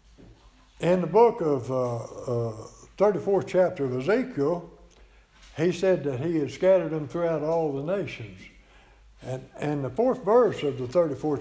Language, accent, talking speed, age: English, American, 155 wpm, 60-79